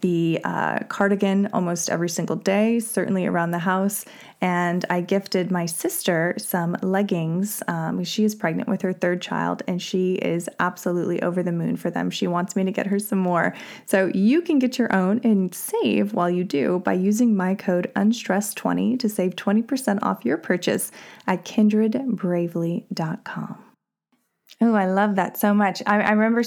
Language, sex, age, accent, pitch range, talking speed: English, female, 20-39, American, 180-220 Hz, 170 wpm